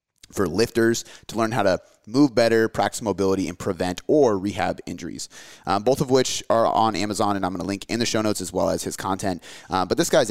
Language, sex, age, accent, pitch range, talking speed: English, male, 30-49, American, 95-120 Hz, 235 wpm